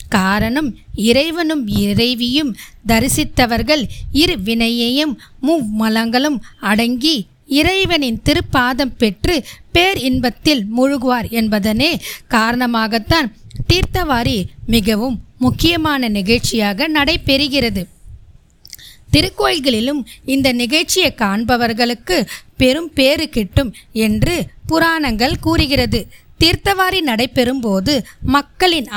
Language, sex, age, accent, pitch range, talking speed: Tamil, female, 20-39, native, 220-295 Hz, 65 wpm